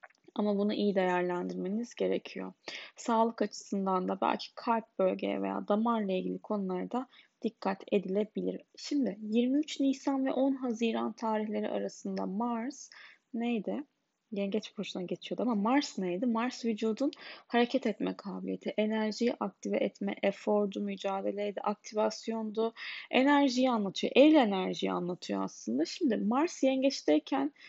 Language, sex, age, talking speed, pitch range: Turkish, female, 10-29, 115 wpm, 205-260 Hz